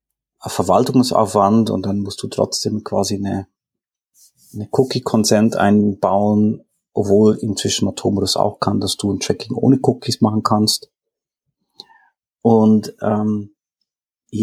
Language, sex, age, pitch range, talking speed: German, male, 40-59, 100-130 Hz, 110 wpm